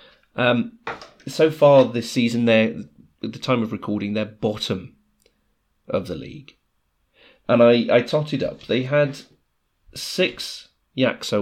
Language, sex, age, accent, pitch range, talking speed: English, male, 30-49, British, 105-135 Hz, 130 wpm